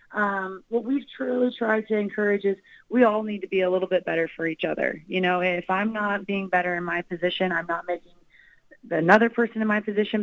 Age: 30-49